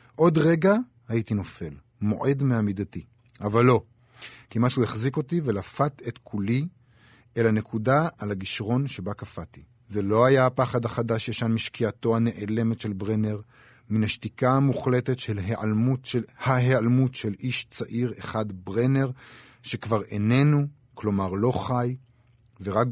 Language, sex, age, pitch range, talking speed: Hebrew, male, 50-69, 110-125 Hz, 125 wpm